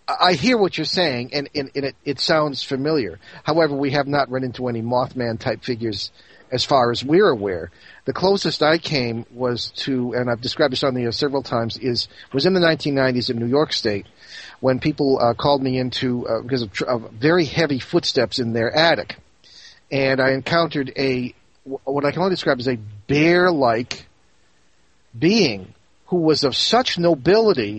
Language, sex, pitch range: English, male, 125-160 Hz